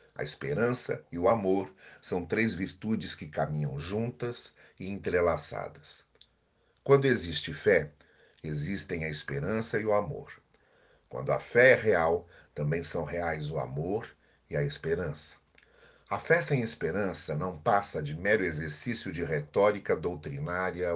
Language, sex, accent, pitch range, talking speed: Portuguese, male, Brazilian, 75-115 Hz, 135 wpm